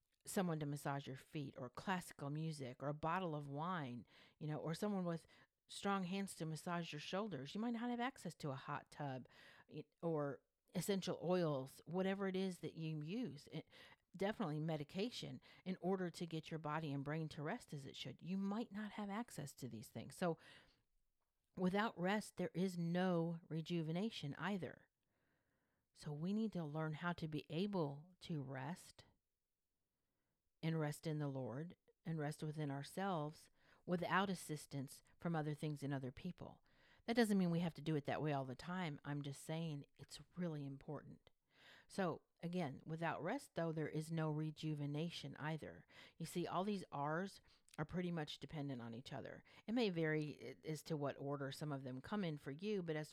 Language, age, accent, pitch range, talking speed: English, 50-69, American, 145-180 Hz, 180 wpm